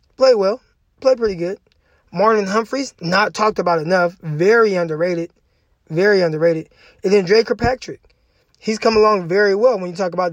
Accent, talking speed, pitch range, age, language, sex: American, 165 wpm, 180-260 Hz, 20-39, English, male